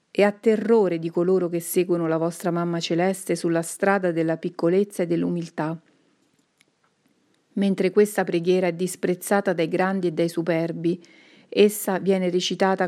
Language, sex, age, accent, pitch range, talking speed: Italian, female, 40-59, native, 170-200 Hz, 140 wpm